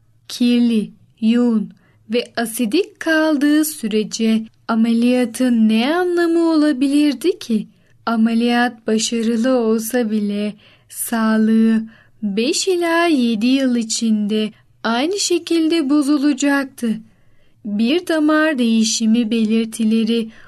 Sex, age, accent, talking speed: female, 10-29, native, 80 wpm